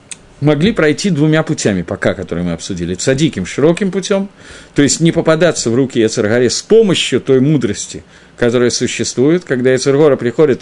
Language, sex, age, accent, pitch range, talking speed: Russian, male, 50-69, native, 105-160 Hz, 160 wpm